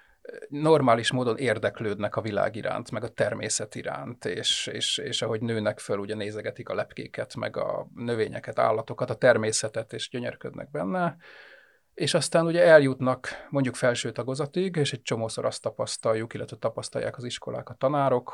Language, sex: Hungarian, male